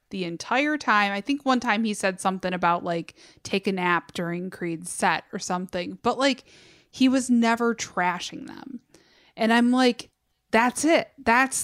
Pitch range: 190-250 Hz